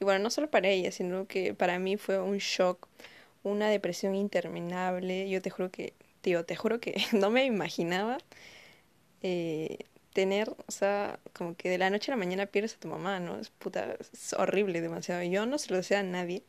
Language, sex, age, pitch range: Spanish, female, 20-39, 180-215 Hz